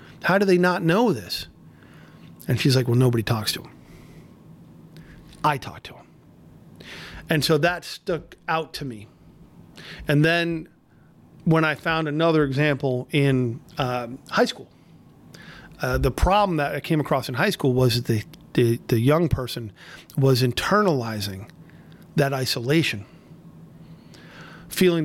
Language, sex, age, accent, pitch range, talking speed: English, male, 40-59, American, 130-160 Hz, 140 wpm